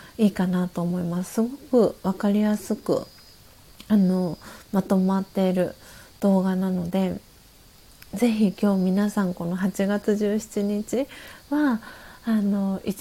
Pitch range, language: 200-250 Hz, Japanese